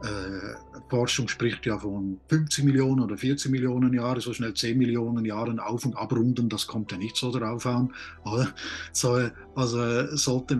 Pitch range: 110-140 Hz